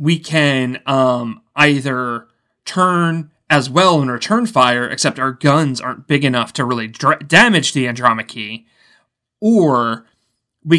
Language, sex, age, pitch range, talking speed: English, male, 30-49, 125-155 Hz, 135 wpm